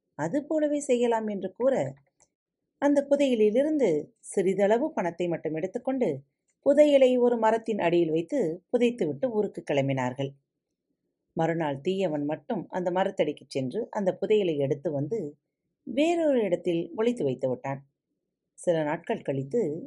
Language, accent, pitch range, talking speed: Tamil, native, 150-225 Hz, 110 wpm